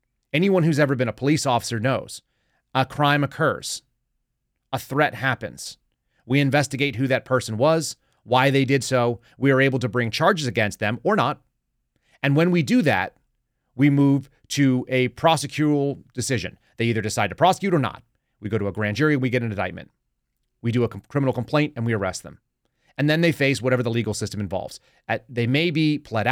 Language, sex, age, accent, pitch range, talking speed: English, male, 30-49, American, 115-140 Hz, 190 wpm